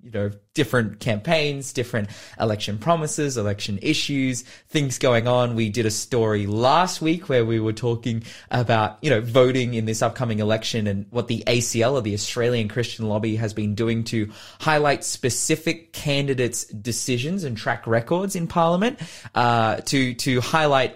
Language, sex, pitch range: English, male, 105-135 Hz